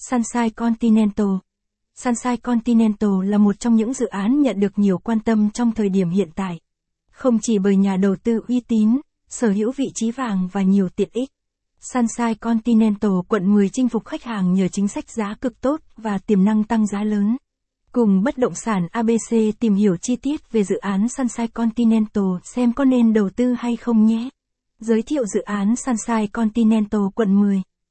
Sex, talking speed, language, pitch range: female, 185 wpm, Vietnamese, 205-235 Hz